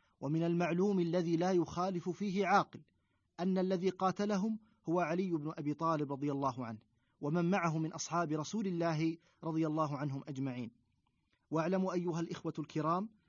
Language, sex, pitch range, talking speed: Arabic, male, 155-195 Hz, 145 wpm